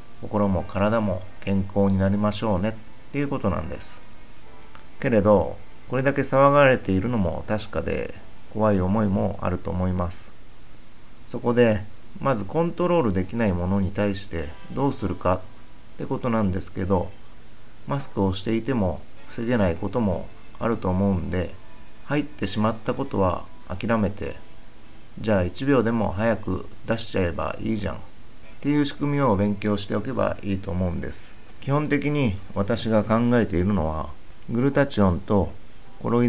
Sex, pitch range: male, 90-115 Hz